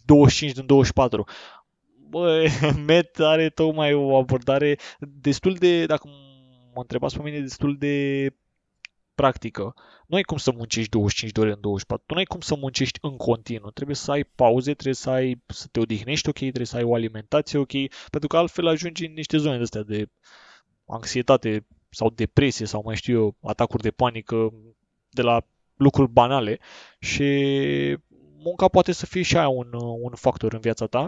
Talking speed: 175 wpm